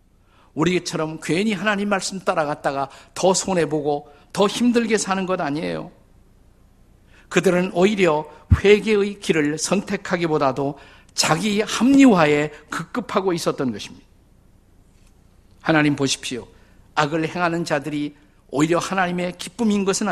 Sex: male